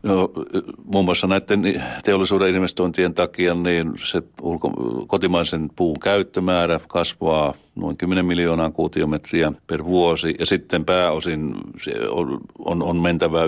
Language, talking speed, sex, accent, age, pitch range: Finnish, 105 wpm, male, native, 60-79, 80-90 Hz